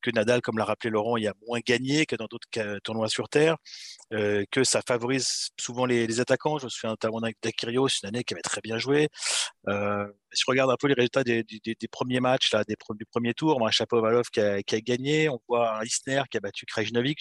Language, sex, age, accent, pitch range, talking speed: French, male, 30-49, French, 110-135 Hz, 250 wpm